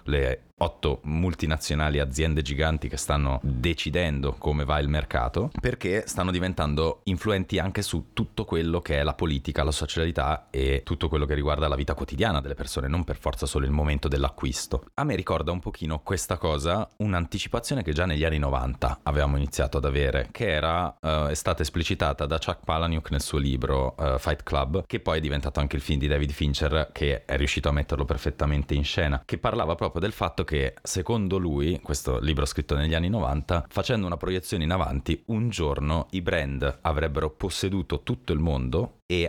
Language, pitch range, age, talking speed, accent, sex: Italian, 70-85 Hz, 30-49, 185 wpm, native, male